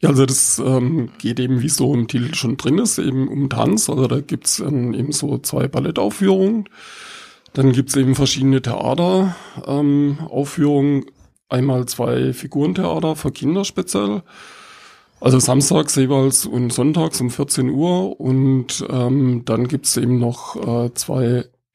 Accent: German